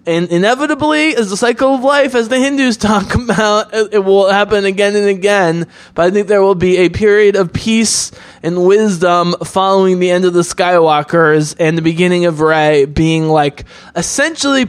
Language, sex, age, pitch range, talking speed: English, male, 20-39, 175-215 Hz, 180 wpm